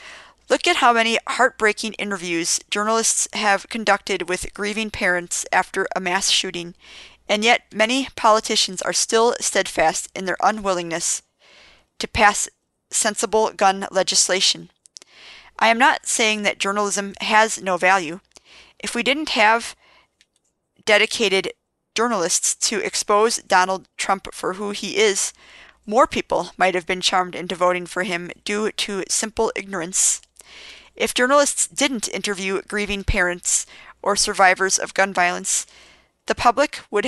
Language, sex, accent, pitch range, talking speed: English, female, American, 190-225 Hz, 135 wpm